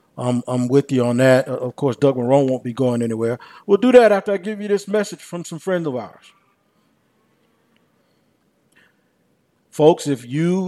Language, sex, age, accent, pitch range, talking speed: English, male, 50-69, American, 130-170 Hz, 180 wpm